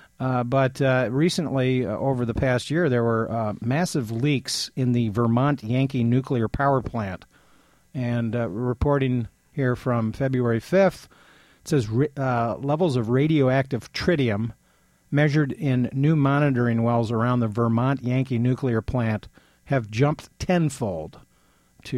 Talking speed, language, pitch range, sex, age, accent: 135 wpm, English, 115-135 Hz, male, 50-69, American